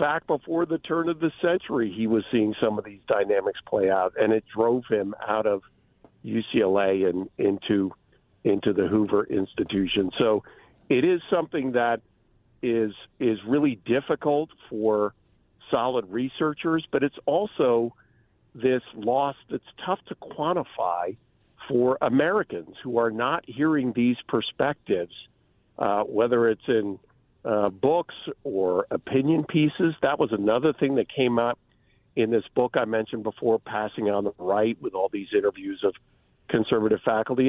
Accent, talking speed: American, 145 wpm